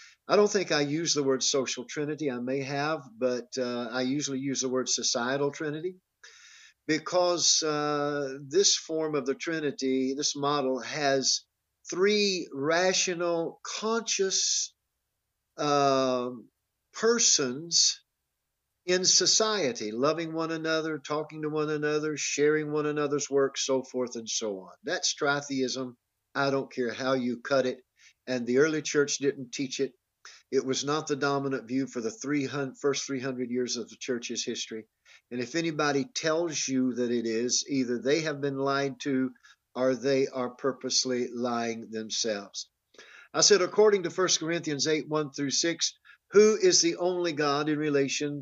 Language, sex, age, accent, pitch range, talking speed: English, male, 50-69, American, 130-155 Hz, 150 wpm